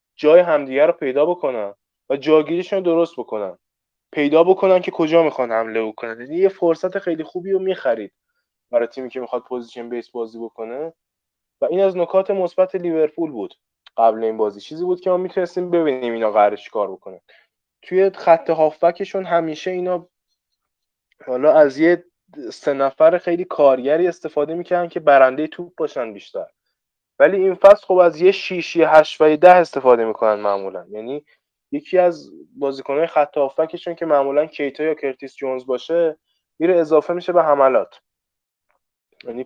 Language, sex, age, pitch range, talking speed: Persian, male, 20-39, 130-180 Hz, 160 wpm